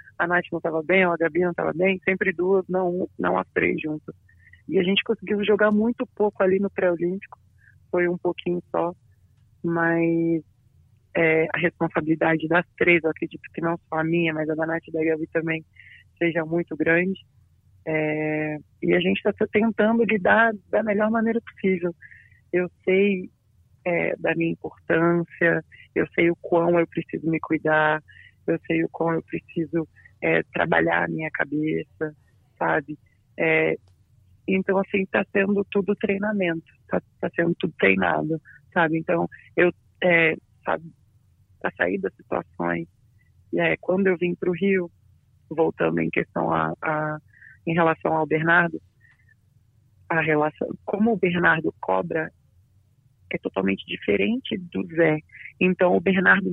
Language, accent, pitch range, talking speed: Portuguese, Brazilian, 120-185 Hz, 155 wpm